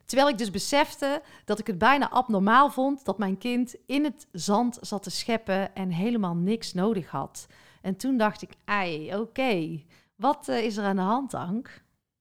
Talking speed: 185 wpm